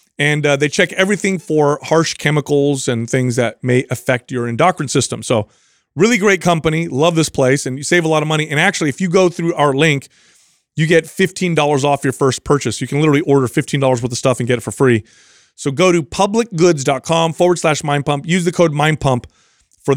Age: 30-49